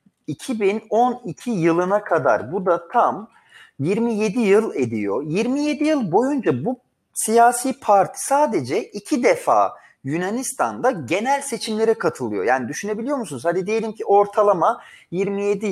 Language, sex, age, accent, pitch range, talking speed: Turkish, male, 40-59, native, 155-240 Hz, 115 wpm